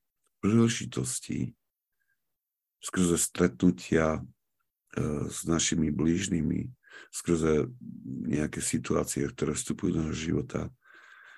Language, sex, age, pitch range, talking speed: Slovak, male, 50-69, 75-90 Hz, 70 wpm